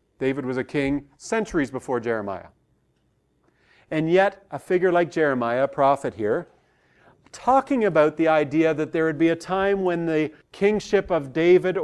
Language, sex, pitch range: English, male, 125-160 Hz